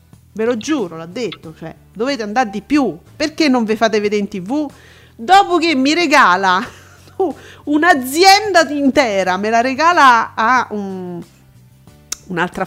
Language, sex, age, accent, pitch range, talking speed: Italian, female, 40-59, native, 190-275 Hz, 135 wpm